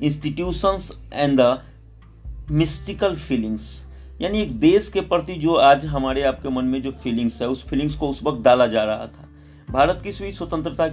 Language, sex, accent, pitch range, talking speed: Hindi, male, native, 120-140 Hz, 170 wpm